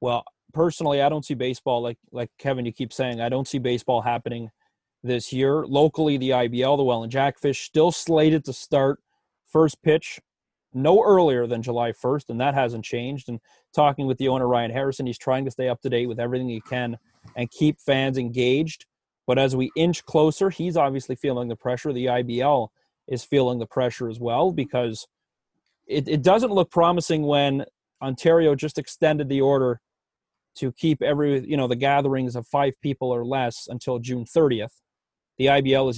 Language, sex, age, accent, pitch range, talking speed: English, male, 30-49, American, 120-145 Hz, 185 wpm